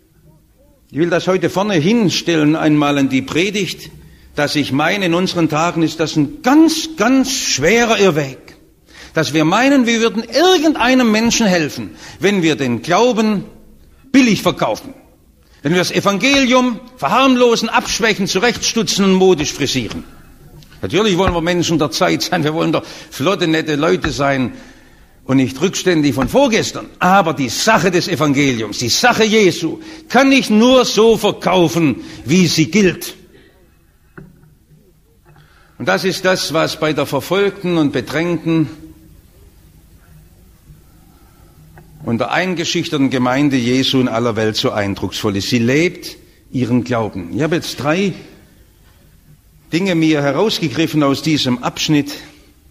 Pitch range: 135-200 Hz